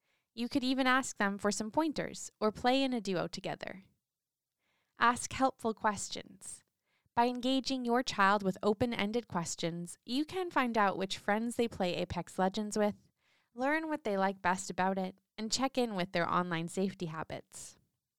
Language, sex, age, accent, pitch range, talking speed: English, female, 20-39, American, 185-240 Hz, 165 wpm